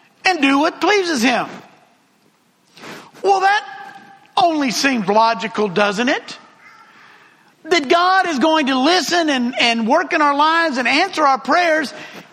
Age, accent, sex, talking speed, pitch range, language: 50-69, American, male, 135 wpm, 255-360 Hz, English